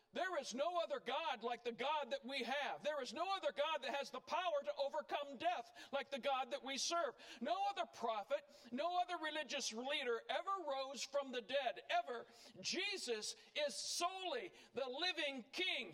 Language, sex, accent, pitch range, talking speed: English, male, American, 235-305 Hz, 180 wpm